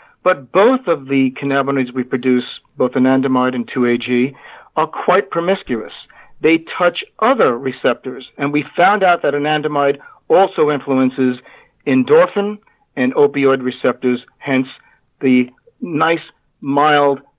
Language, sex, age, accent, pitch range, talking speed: English, male, 50-69, American, 135-180 Hz, 115 wpm